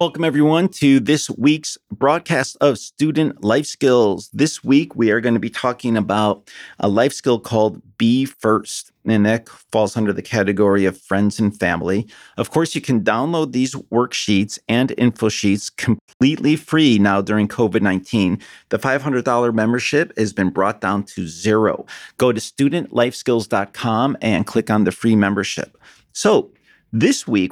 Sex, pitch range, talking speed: male, 100-130 Hz, 155 wpm